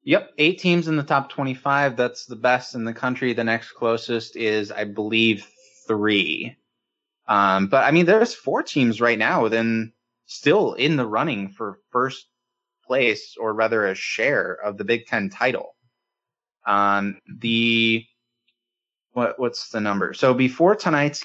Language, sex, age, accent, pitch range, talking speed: English, male, 20-39, American, 110-140 Hz, 155 wpm